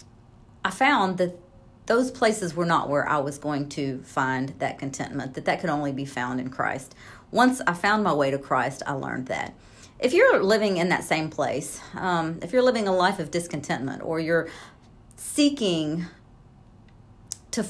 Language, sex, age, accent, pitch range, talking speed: English, female, 40-59, American, 145-195 Hz, 175 wpm